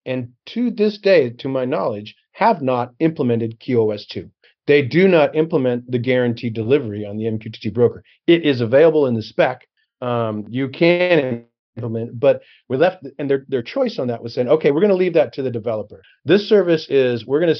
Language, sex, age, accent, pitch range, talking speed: English, male, 40-59, American, 115-145 Hz, 200 wpm